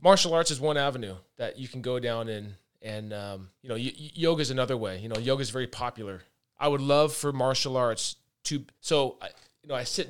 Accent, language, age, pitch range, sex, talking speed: American, English, 20-39, 110-135 Hz, male, 230 wpm